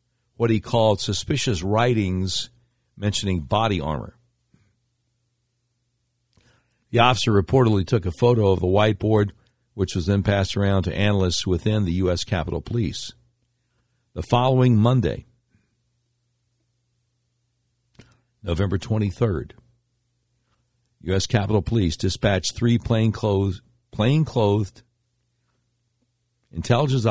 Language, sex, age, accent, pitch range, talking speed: English, male, 60-79, American, 95-120 Hz, 90 wpm